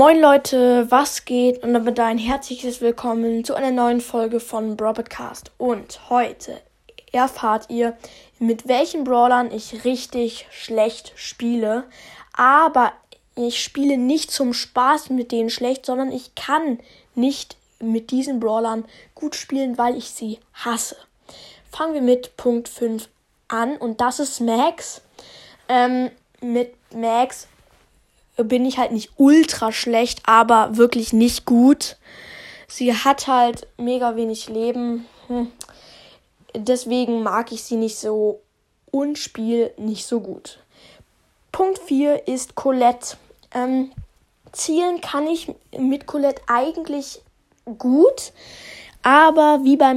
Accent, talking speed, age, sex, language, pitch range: German, 125 wpm, 10-29, female, German, 235-270 Hz